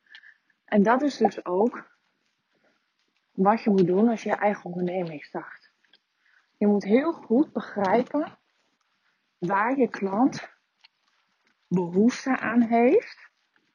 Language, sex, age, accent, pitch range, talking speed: Dutch, female, 30-49, Dutch, 195-245 Hz, 115 wpm